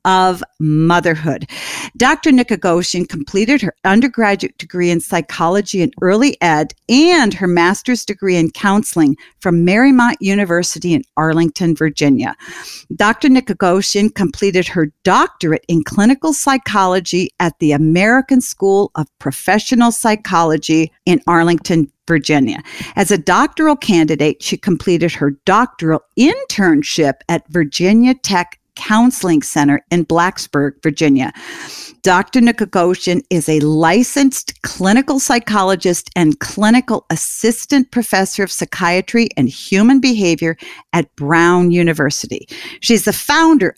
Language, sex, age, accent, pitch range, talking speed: English, female, 50-69, American, 165-240 Hz, 110 wpm